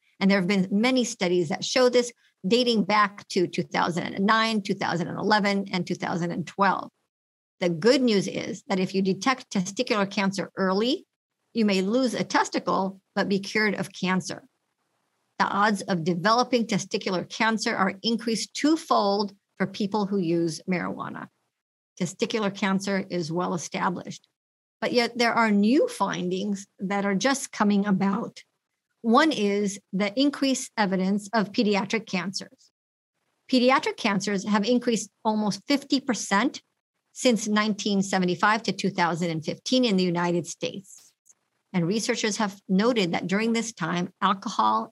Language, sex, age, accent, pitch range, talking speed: English, male, 50-69, American, 185-230 Hz, 130 wpm